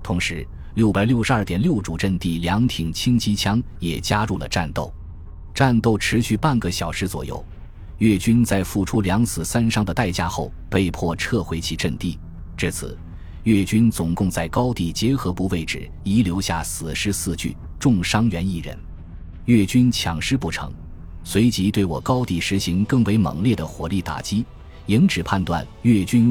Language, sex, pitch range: Chinese, male, 85-110 Hz